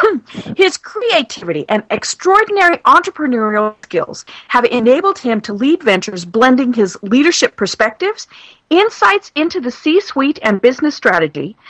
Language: English